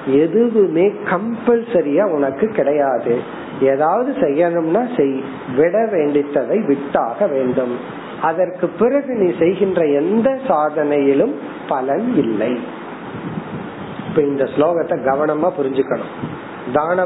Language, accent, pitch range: Tamil, native, 145-195 Hz